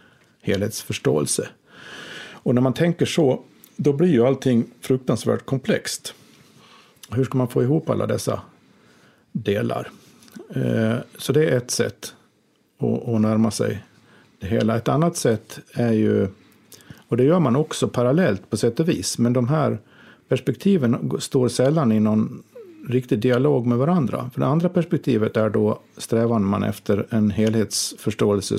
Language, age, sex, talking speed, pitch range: Swedish, 50-69, male, 145 wpm, 110-140 Hz